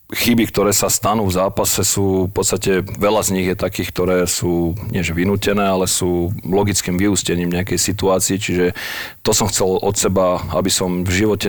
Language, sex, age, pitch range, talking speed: Slovak, male, 40-59, 90-100 Hz, 180 wpm